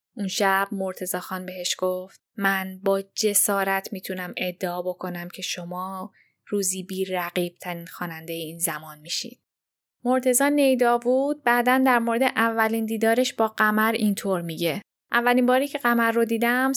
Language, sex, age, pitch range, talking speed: Persian, female, 10-29, 180-230 Hz, 135 wpm